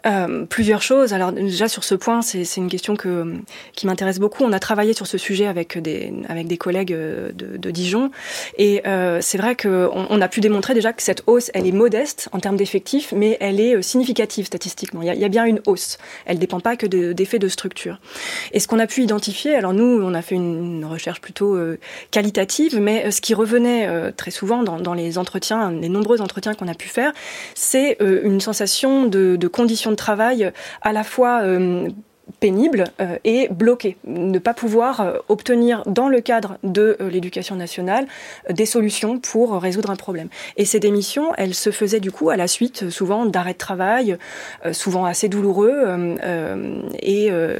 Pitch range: 180-225 Hz